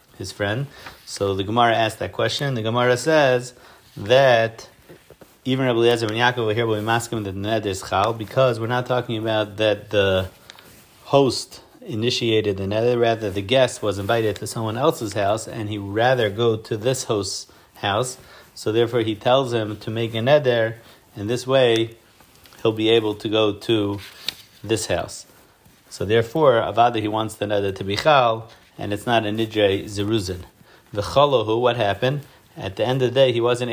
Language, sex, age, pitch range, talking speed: English, male, 30-49, 105-125 Hz, 180 wpm